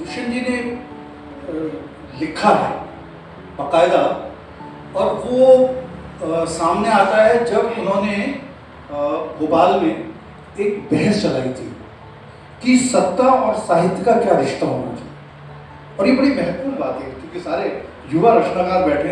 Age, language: 40-59, Hindi